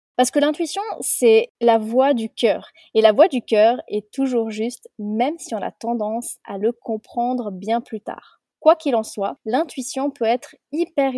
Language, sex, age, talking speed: French, female, 20-39, 190 wpm